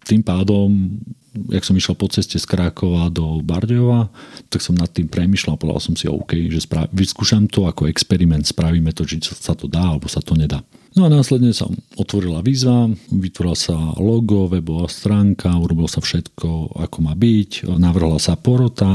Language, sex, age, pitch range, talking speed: Slovak, male, 40-59, 85-105 Hz, 180 wpm